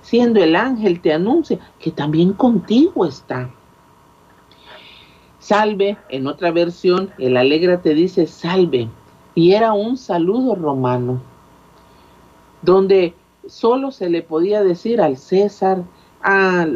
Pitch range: 145-210 Hz